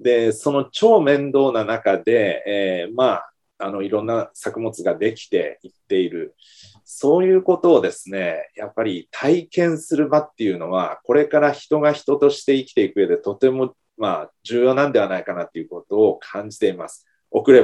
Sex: male